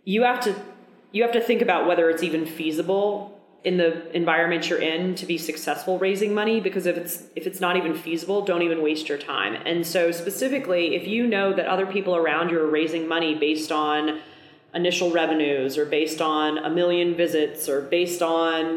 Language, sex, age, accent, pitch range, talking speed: English, female, 30-49, American, 155-195 Hz, 200 wpm